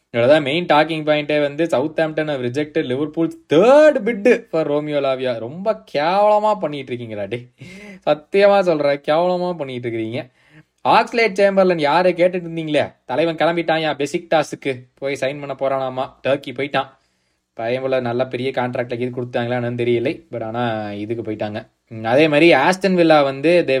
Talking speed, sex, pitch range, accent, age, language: 140 wpm, male, 120-165 Hz, native, 20-39, Tamil